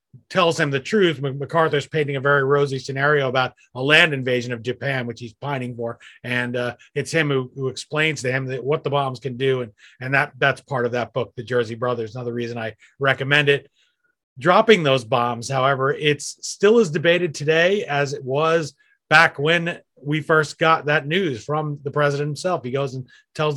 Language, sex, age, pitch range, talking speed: English, male, 30-49, 135-160 Hz, 200 wpm